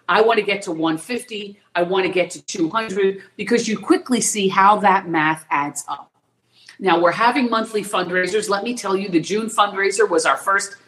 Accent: American